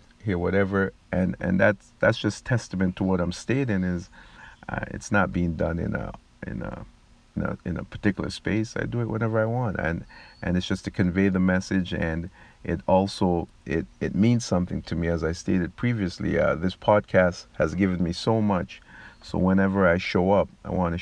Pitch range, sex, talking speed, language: 85-100 Hz, male, 205 wpm, English